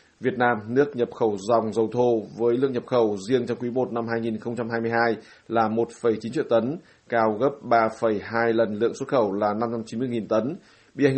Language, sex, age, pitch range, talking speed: Vietnamese, male, 20-39, 110-120 Hz, 190 wpm